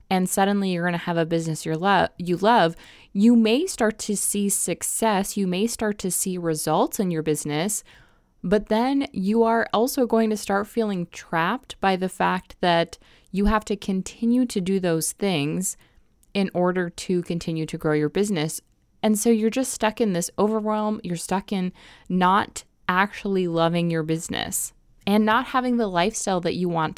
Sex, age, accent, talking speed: female, 20-39, American, 175 wpm